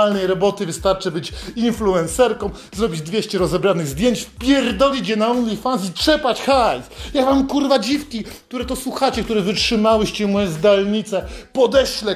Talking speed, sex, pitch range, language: 135 wpm, male, 180-225 Hz, Polish